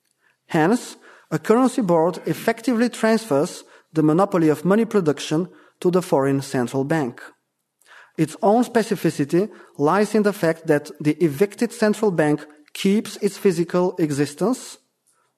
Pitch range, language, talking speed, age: 150-200 Hz, English, 125 wpm, 30-49